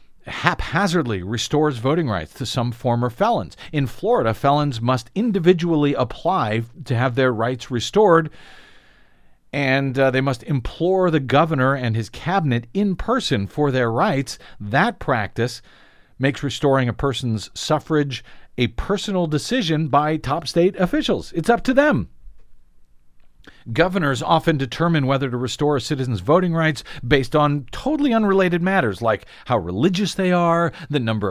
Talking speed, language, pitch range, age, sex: 140 wpm, English, 120-170 Hz, 50-69, male